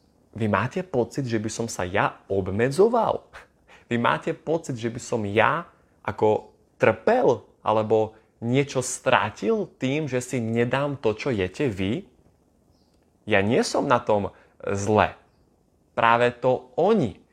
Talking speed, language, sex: 130 wpm, Slovak, male